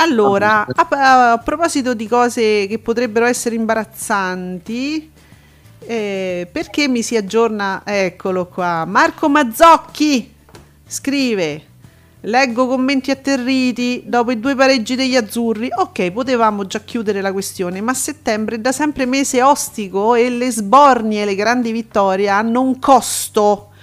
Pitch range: 195-260 Hz